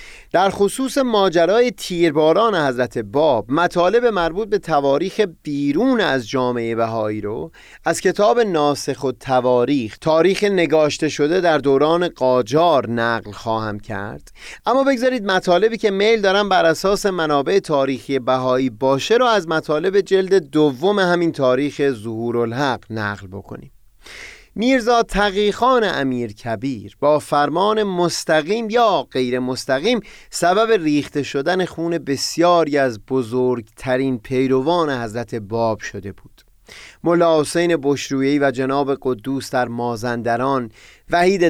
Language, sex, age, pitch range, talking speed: Persian, male, 30-49, 125-180 Hz, 120 wpm